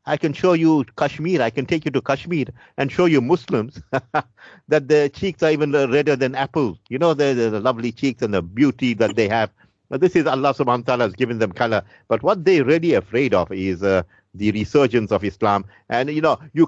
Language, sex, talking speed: English, male, 220 wpm